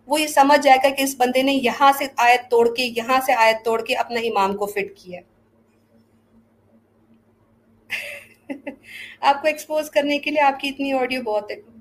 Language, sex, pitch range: Urdu, female, 235-290 Hz